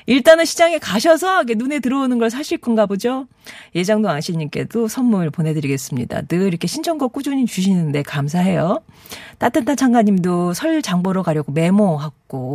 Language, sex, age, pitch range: Korean, female, 40-59, 165-255 Hz